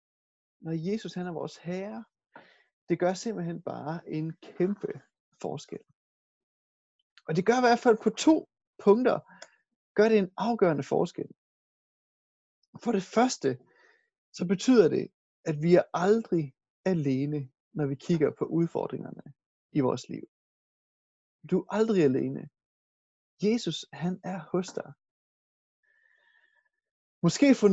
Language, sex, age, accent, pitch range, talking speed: Danish, male, 30-49, native, 160-235 Hz, 125 wpm